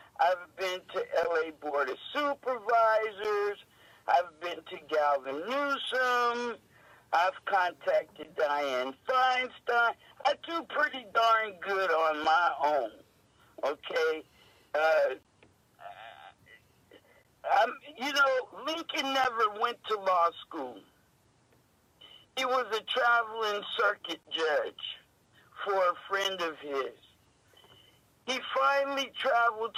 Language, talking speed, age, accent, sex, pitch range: English, 95 wpm, 60-79, American, male, 180-260 Hz